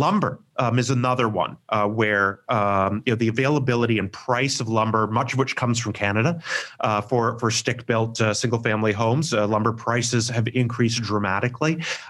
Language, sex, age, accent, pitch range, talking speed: English, male, 30-49, American, 115-145 Hz, 180 wpm